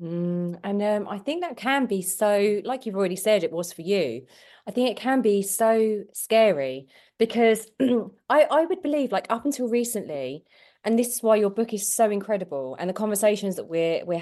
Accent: British